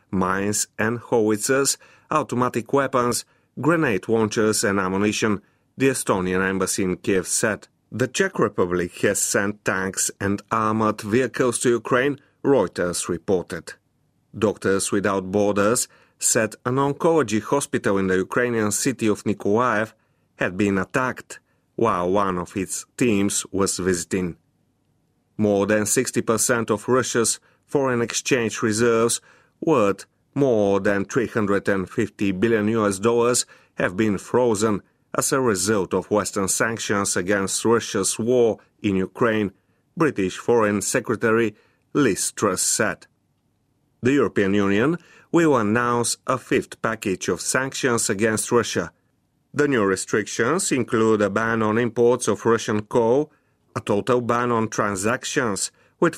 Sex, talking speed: male, 125 wpm